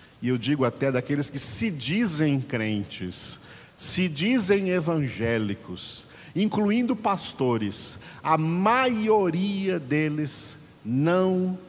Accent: Brazilian